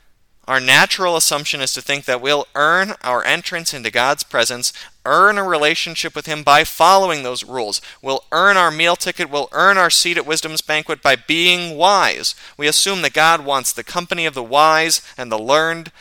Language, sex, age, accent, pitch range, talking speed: English, male, 30-49, American, 130-165 Hz, 190 wpm